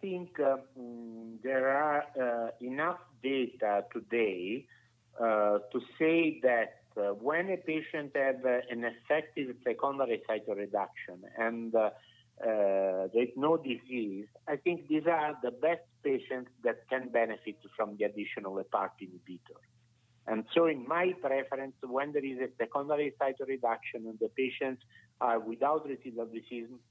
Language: English